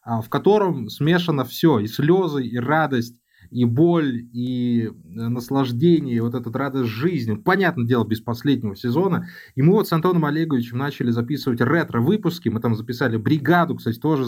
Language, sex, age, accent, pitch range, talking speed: Russian, male, 20-39, native, 125-185 Hz, 155 wpm